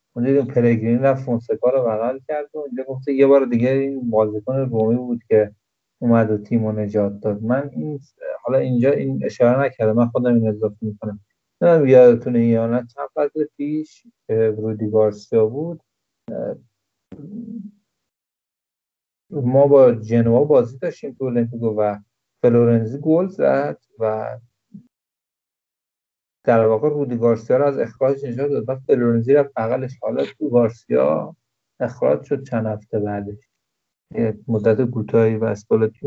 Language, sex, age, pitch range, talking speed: Persian, male, 50-69, 110-140 Hz, 135 wpm